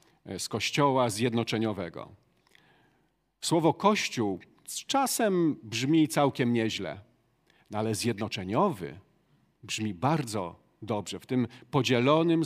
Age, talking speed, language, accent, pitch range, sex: 40-59, 85 wpm, Polish, native, 115-155 Hz, male